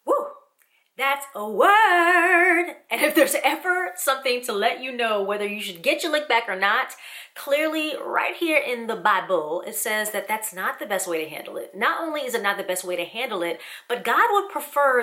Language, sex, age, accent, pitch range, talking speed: English, female, 30-49, American, 190-295 Hz, 210 wpm